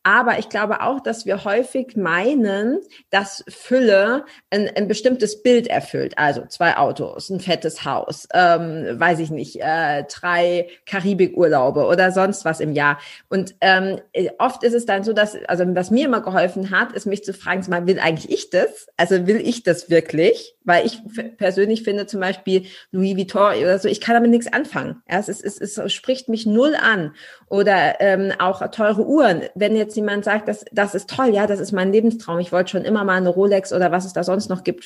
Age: 30-49